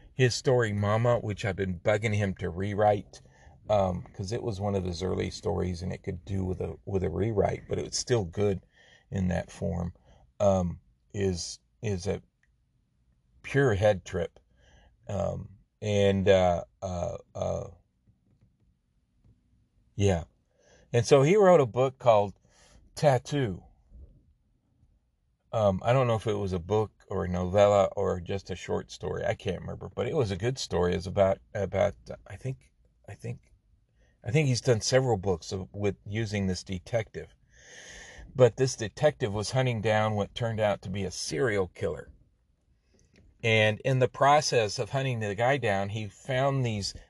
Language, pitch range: English, 95-120 Hz